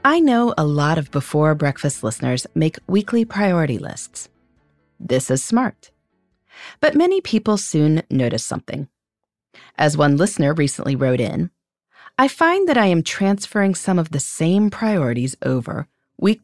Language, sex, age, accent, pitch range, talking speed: English, female, 30-49, American, 140-215 Hz, 140 wpm